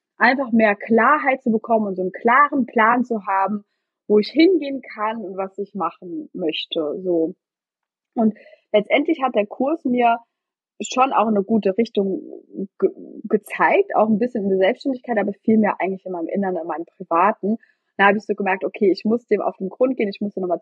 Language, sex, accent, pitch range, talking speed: German, female, German, 190-245 Hz, 190 wpm